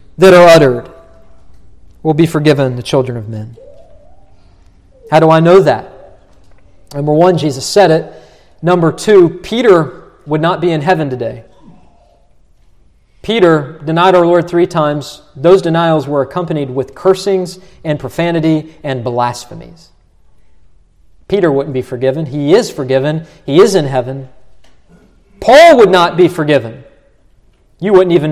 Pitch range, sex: 140-200 Hz, male